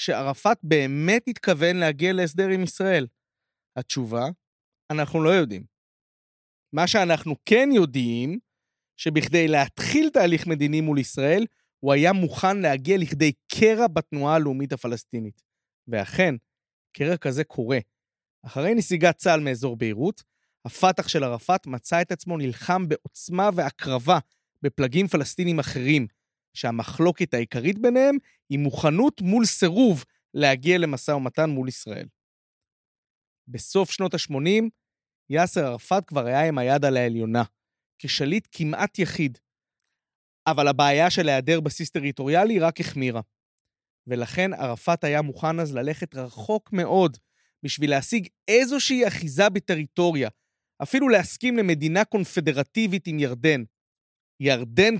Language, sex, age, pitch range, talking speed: Hebrew, male, 30-49, 135-185 Hz, 115 wpm